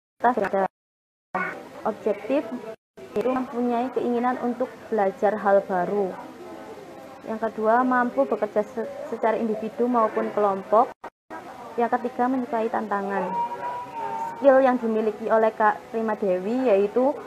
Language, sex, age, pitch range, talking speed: Indonesian, female, 20-39, 205-250 Hz, 95 wpm